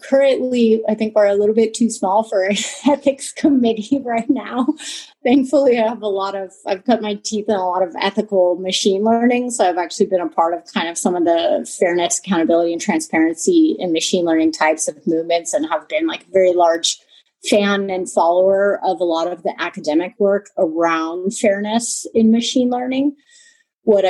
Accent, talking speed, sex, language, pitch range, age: American, 190 wpm, female, English, 180-235 Hz, 30-49